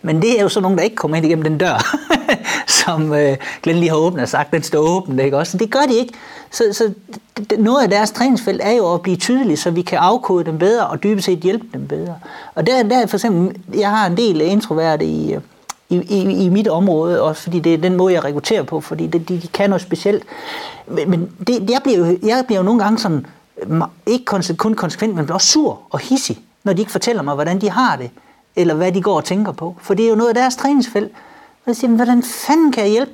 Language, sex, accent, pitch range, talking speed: Danish, male, native, 175-240 Hz, 240 wpm